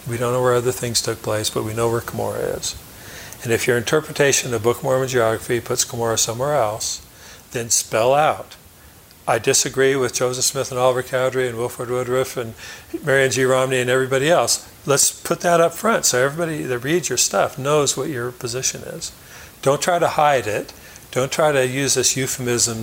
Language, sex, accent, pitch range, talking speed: English, male, American, 115-130 Hz, 195 wpm